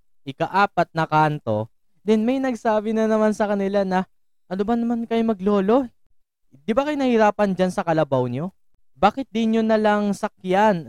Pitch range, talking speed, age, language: 120-200 Hz, 155 wpm, 20-39, English